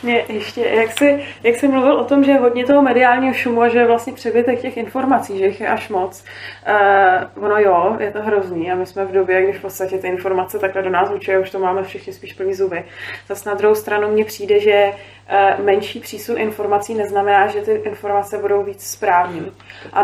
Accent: native